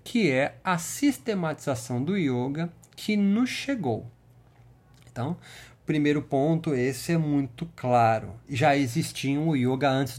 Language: Portuguese